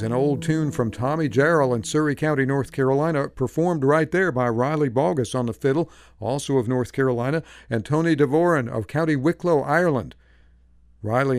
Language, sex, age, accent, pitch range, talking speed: English, male, 50-69, American, 120-150 Hz, 170 wpm